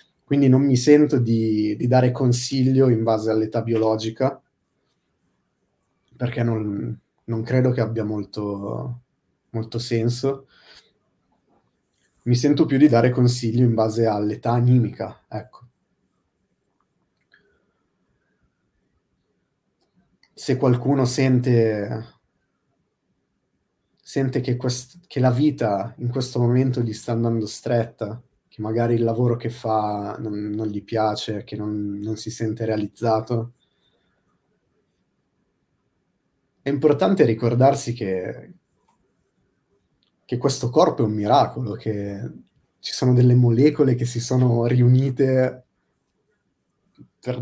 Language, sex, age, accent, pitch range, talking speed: Italian, male, 30-49, native, 110-130 Hz, 105 wpm